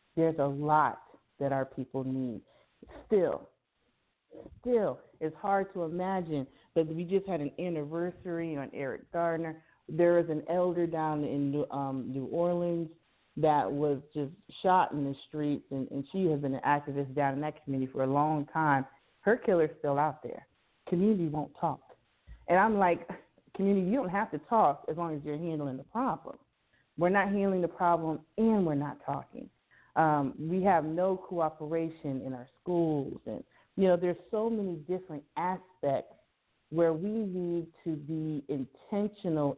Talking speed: 165 wpm